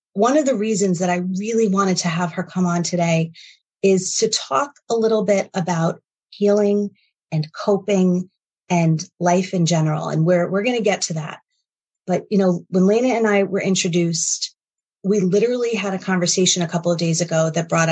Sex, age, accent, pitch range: female, 30-49, American, 170-200 Hz